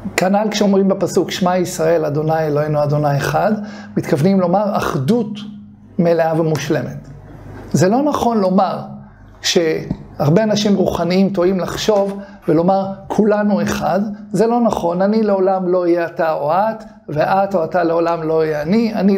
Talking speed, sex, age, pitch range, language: 140 wpm, male, 50-69, 180-215 Hz, Hebrew